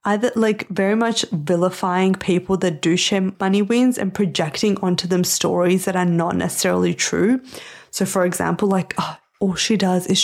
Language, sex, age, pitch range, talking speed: English, female, 20-39, 180-200 Hz, 170 wpm